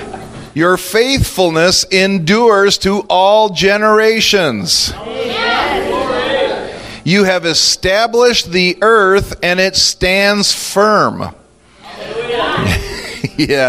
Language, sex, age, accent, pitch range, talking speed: English, male, 40-59, American, 130-190 Hz, 70 wpm